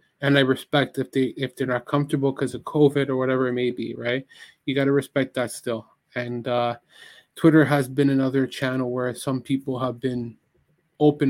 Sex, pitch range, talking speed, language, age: male, 130-145 Hz, 190 wpm, English, 20-39